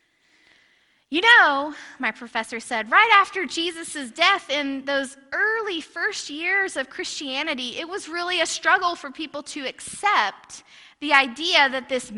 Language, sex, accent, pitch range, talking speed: English, female, American, 225-330 Hz, 145 wpm